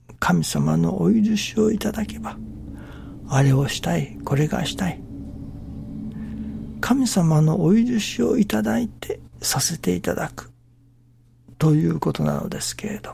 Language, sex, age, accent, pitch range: Japanese, male, 60-79, native, 120-155 Hz